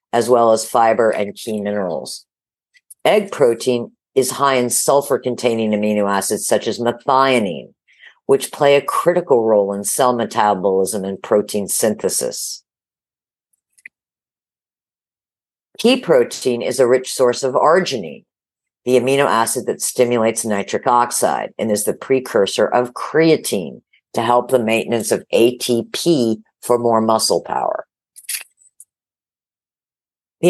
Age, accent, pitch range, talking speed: 50-69, American, 110-135 Hz, 120 wpm